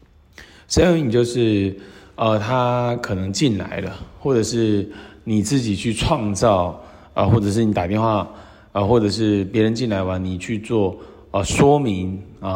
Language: Chinese